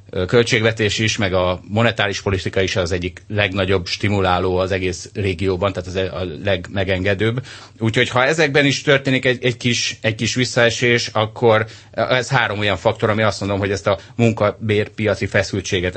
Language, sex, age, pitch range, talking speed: Hungarian, male, 30-49, 95-120 Hz, 160 wpm